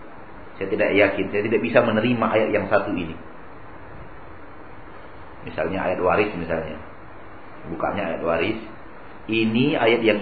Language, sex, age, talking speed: Malay, male, 40-59, 125 wpm